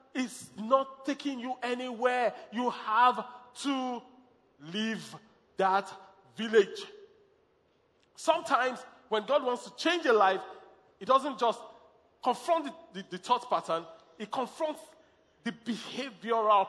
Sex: male